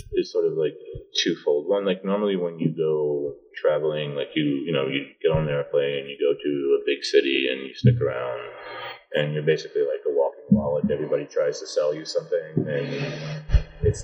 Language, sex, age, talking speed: English, male, 30-49, 200 wpm